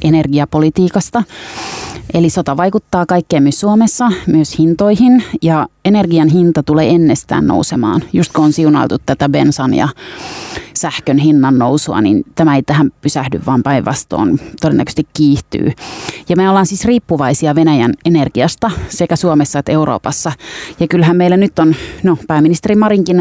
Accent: native